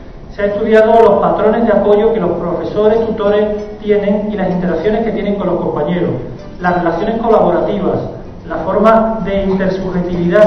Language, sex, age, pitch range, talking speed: Spanish, male, 40-59, 180-220 Hz, 155 wpm